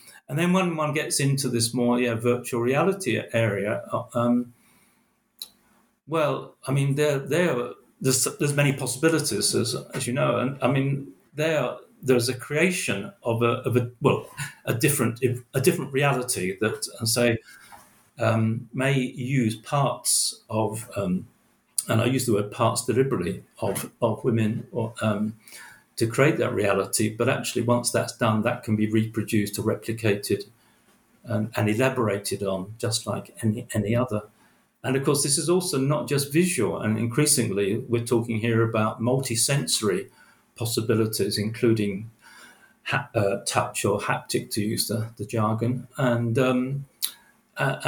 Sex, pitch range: male, 110-135 Hz